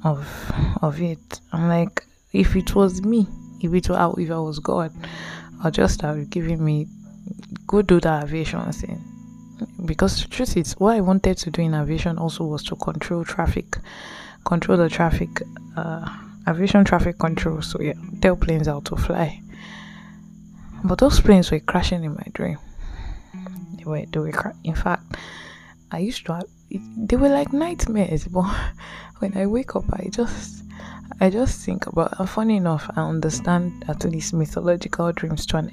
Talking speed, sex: 170 wpm, female